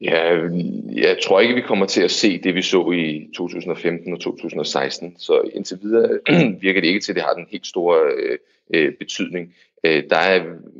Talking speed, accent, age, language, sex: 180 wpm, native, 30-49, Danish, male